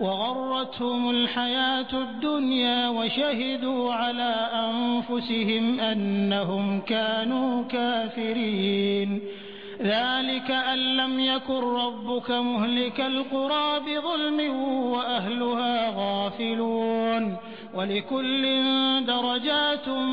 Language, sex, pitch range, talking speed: Hindi, male, 225-265 Hz, 60 wpm